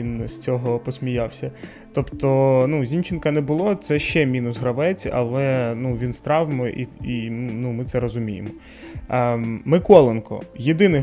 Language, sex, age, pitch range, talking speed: Ukrainian, male, 20-39, 120-145 Hz, 145 wpm